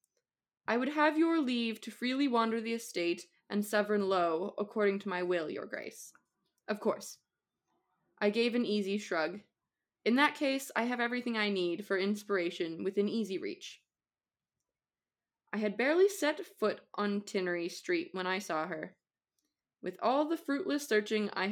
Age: 20-39